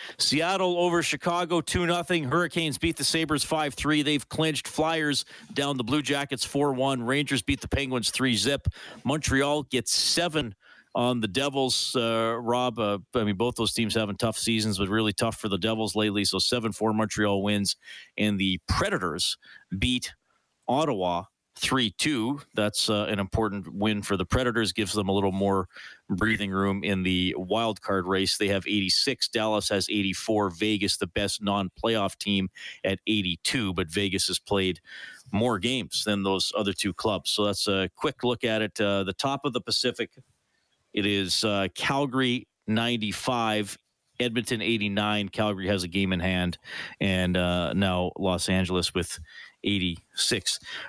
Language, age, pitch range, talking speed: English, 40-59, 100-135 Hz, 155 wpm